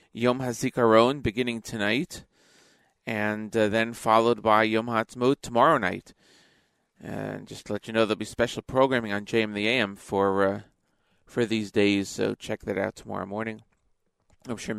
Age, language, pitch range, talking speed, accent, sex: 40-59, English, 110-140 Hz, 160 wpm, American, male